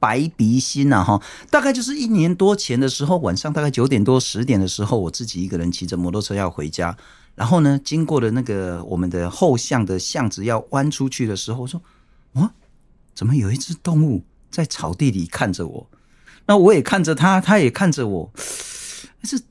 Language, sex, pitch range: Chinese, male, 105-160 Hz